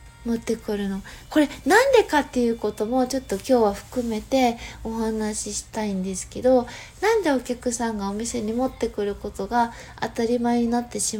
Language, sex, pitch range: Japanese, female, 230-315 Hz